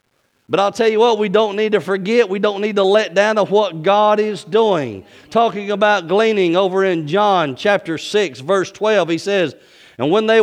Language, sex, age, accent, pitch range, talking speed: English, male, 50-69, American, 195-240 Hz, 205 wpm